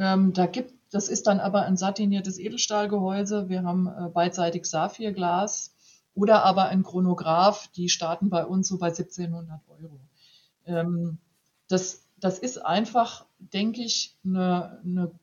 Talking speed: 140 wpm